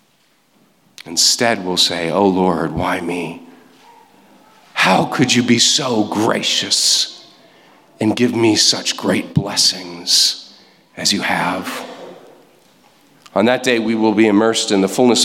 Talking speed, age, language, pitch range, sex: 125 wpm, 40-59, English, 105-150 Hz, male